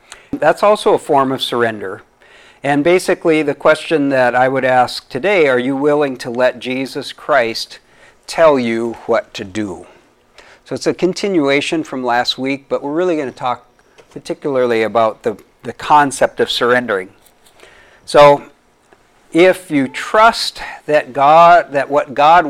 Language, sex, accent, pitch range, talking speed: English, male, American, 125-165 Hz, 145 wpm